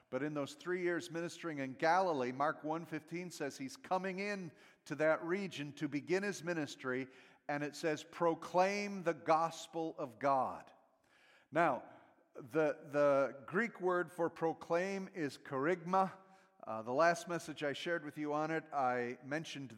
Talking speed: 150 wpm